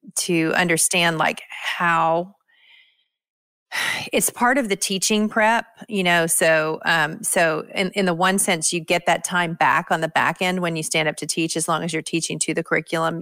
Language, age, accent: English, 40-59, American